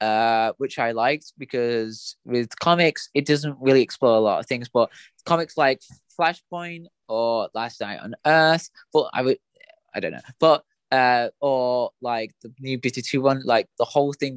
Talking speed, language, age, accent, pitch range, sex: 175 wpm, English, 20-39, British, 110-145 Hz, male